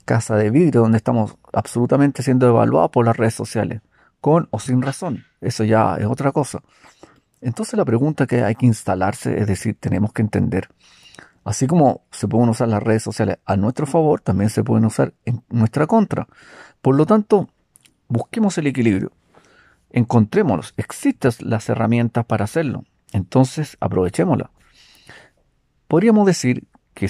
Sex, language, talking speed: male, Spanish, 150 wpm